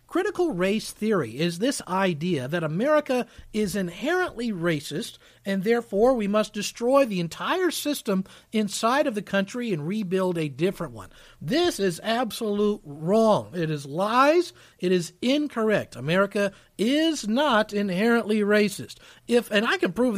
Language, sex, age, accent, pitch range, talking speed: English, male, 50-69, American, 175-245 Hz, 145 wpm